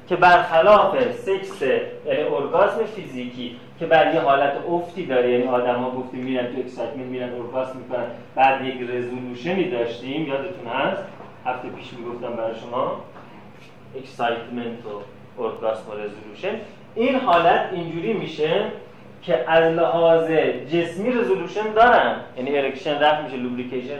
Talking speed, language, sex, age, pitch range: 130 wpm, Persian, male, 30-49, 130-190 Hz